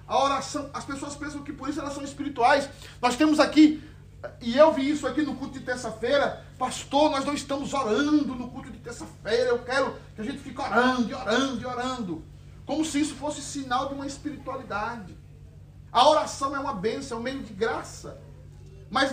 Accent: Brazilian